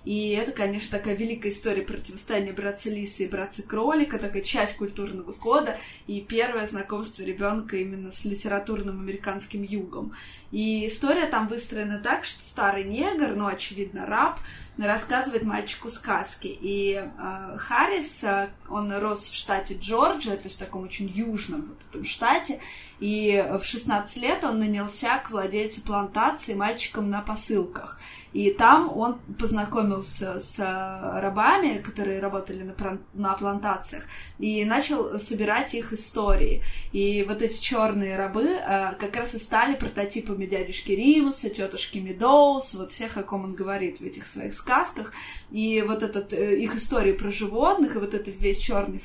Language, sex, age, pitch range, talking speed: Russian, female, 20-39, 200-230 Hz, 145 wpm